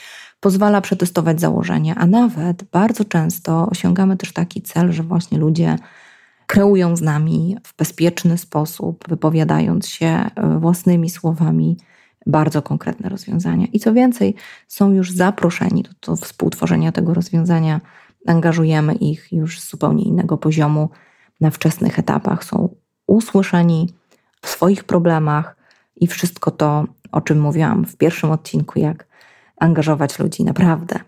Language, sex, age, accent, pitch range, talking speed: Polish, female, 20-39, native, 160-195 Hz, 125 wpm